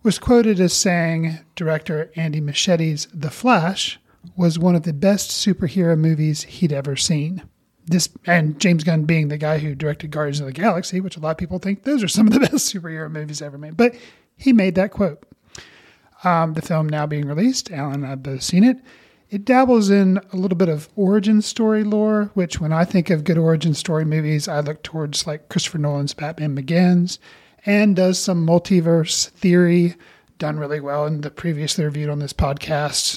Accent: American